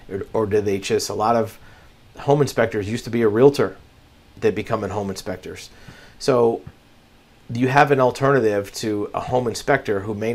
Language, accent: English, American